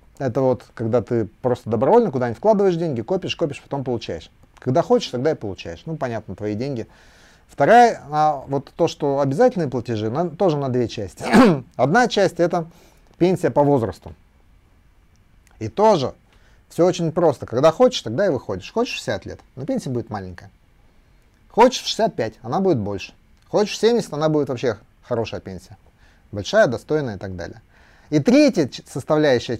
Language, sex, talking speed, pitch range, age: Russian, male, 155 wpm, 110-160 Hz, 30-49